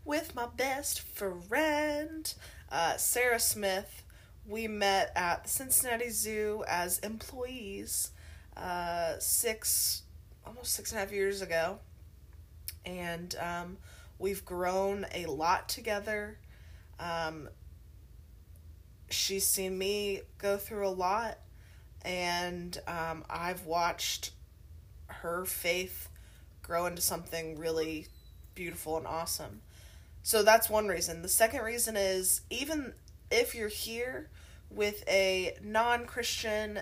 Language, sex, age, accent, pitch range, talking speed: English, female, 20-39, American, 140-215 Hz, 110 wpm